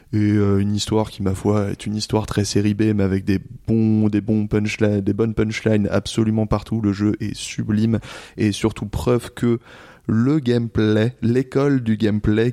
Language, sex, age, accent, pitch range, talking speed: French, male, 20-39, French, 100-115 Hz, 185 wpm